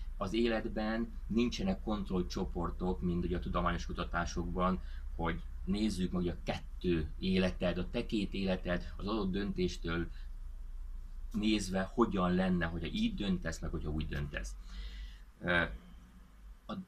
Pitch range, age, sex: 85-100 Hz, 30-49, male